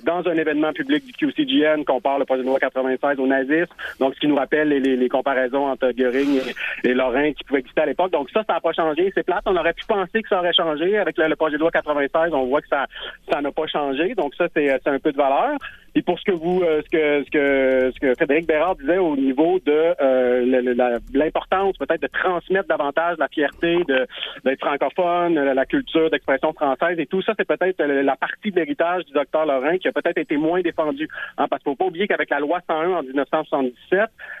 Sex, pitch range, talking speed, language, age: male, 145-185 Hz, 235 wpm, French, 40-59